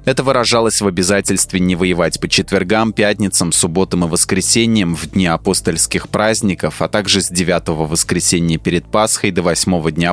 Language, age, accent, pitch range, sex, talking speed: Russian, 20-39, native, 85-105 Hz, male, 155 wpm